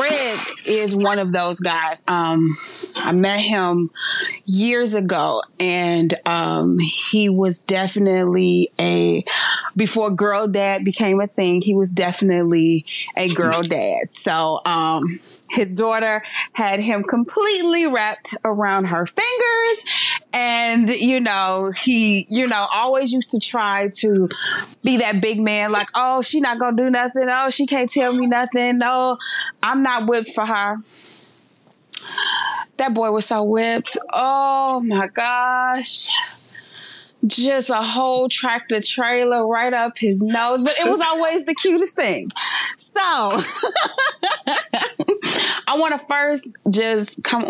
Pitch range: 190-255 Hz